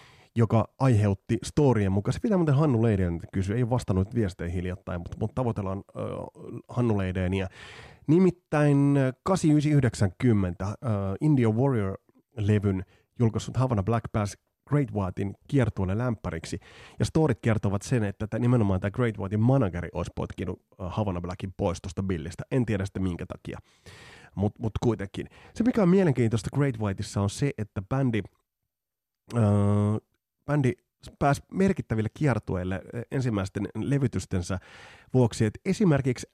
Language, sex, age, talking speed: Finnish, male, 30-49, 130 wpm